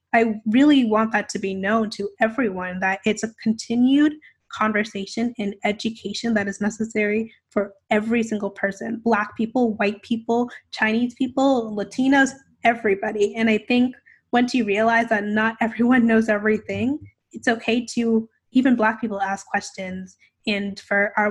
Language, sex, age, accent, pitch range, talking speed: English, female, 10-29, American, 200-230 Hz, 150 wpm